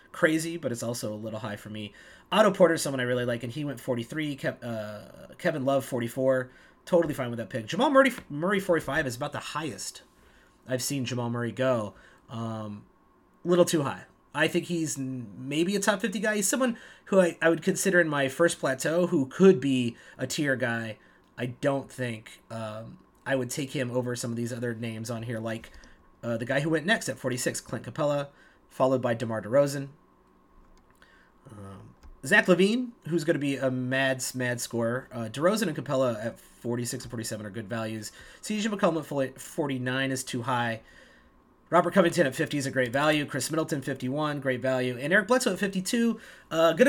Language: English